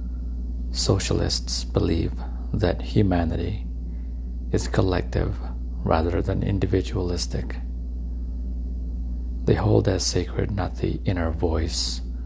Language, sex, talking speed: English, male, 85 wpm